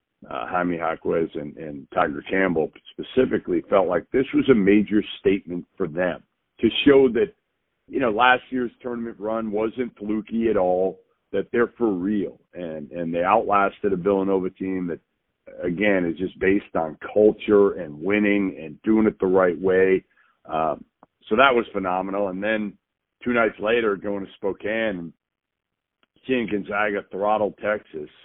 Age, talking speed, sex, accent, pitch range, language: 50-69, 155 wpm, male, American, 95-125 Hz, English